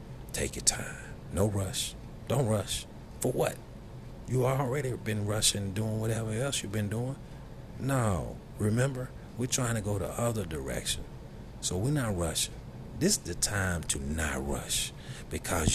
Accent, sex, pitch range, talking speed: American, male, 85-125 Hz, 150 wpm